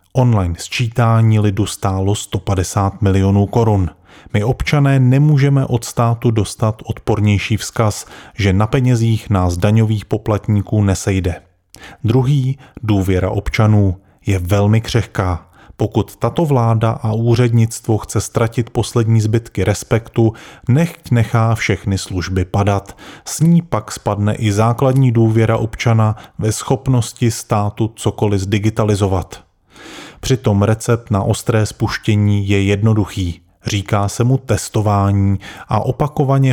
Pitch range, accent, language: 100-120 Hz, native, Czech